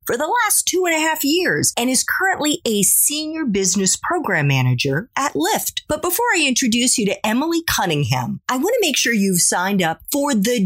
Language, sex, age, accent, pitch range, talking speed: English, female, 40-59, American, 180-295 Hz, 205 wpm